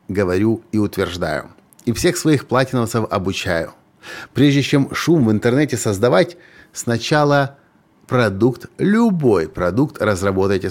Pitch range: 100-145 Hz